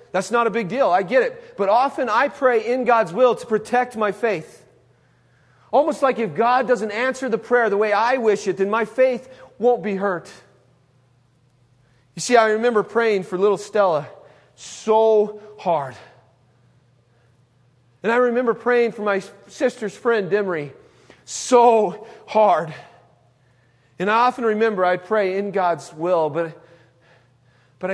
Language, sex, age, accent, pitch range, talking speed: English, male, 40-59, American, 140-230 Hz, 150 wpm